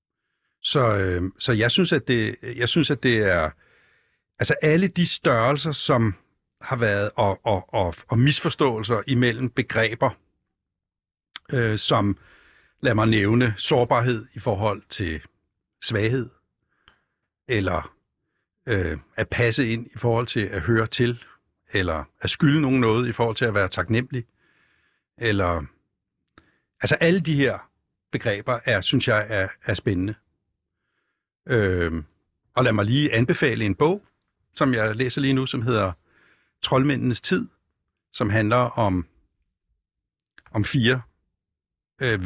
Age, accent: 60-79, native